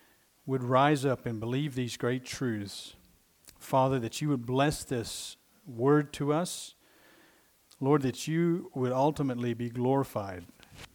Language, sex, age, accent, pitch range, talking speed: English, male, 50-69, American, 110-135 Hz, 130 wpm